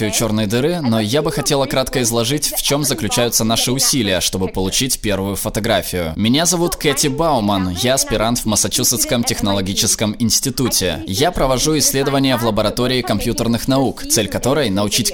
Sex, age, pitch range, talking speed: male, 20-39, 110-135 Hz, 150 wpm